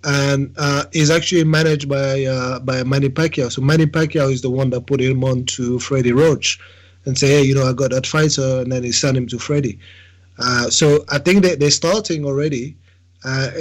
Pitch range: 120-150 Hz